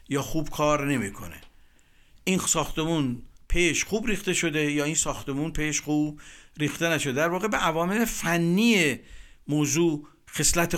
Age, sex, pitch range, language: 50-69, male, 135-170 Hz, Persian